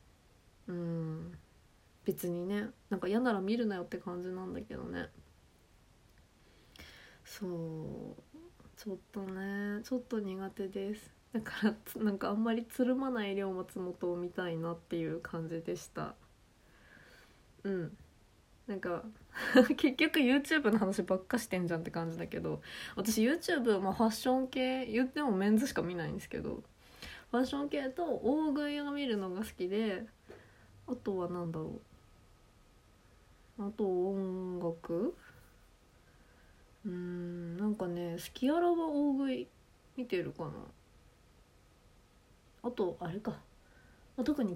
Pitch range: 170-245 Hz